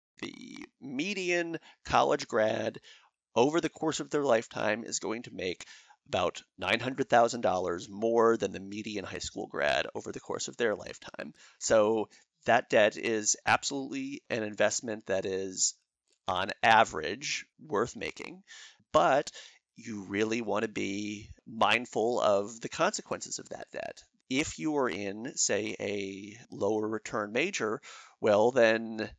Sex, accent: male, American